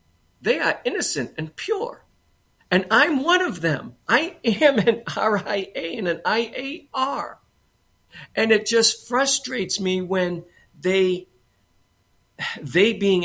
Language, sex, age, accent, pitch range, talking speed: English, male, 50-69, American, 165-240 Hz, 120 wpm